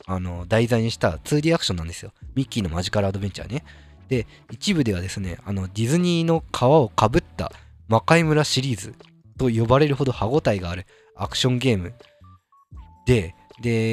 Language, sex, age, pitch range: Japanese, male, 20-39, 95-155 Hz